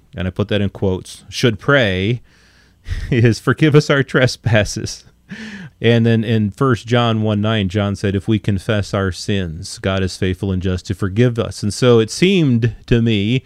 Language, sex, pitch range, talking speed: English, male, 100-120 Hz, 185 wpm